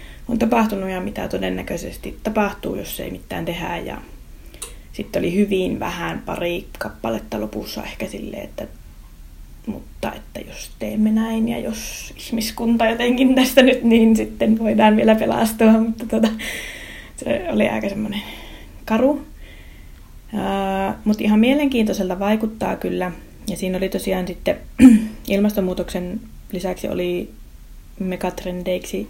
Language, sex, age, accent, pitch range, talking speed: Finnish, female, 20-39, native, 175-220 Hz, 120 wpm